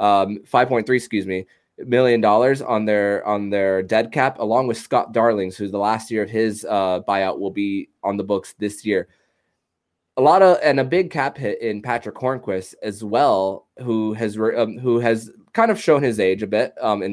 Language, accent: English, American